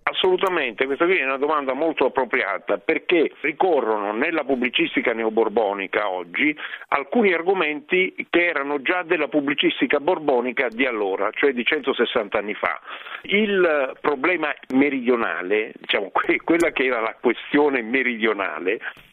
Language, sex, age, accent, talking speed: Italian, male, 50-69, native, 125 wpm